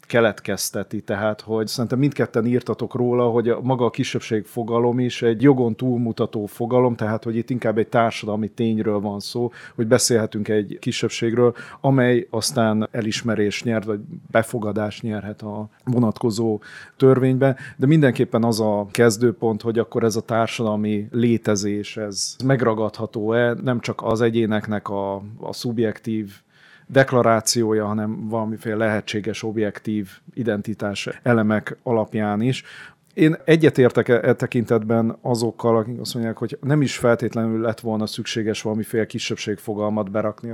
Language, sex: Hungarian, male